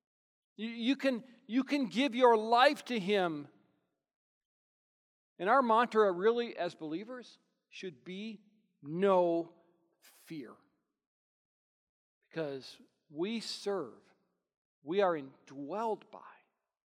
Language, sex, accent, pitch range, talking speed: English, male, American, 185-255 Hz, 90 wpm